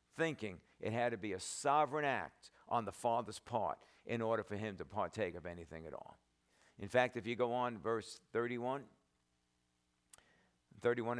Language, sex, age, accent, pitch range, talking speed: English, male, 50-69, American, 95-150 Hz, 165 wpm